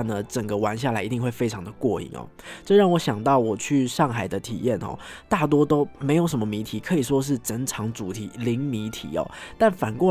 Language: Chinese